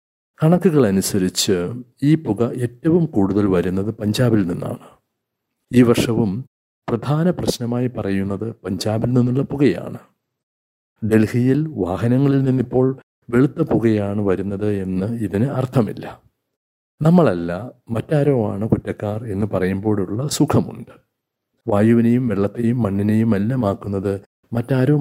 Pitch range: 100-125 Hz